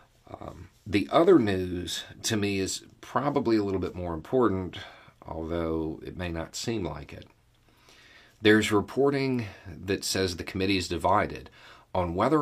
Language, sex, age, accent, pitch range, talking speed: English, male, 40-59, American, 85-115 Hz, 140 wpm